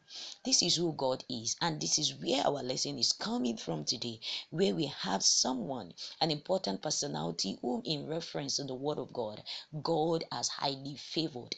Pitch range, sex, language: 130-190 Hz, female, English